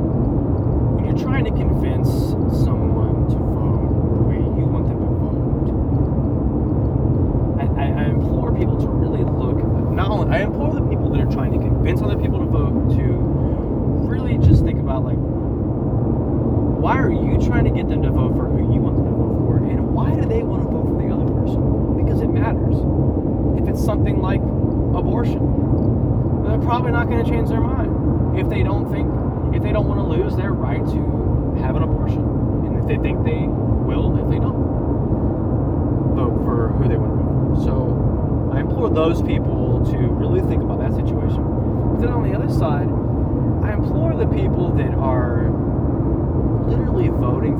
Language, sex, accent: English, male, American